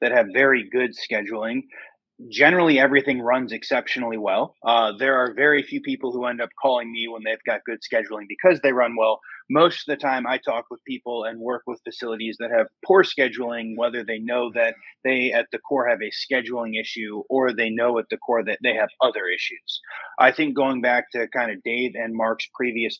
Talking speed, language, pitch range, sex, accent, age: 210 wpm, English, 120-145 Hz, male, American, 30-49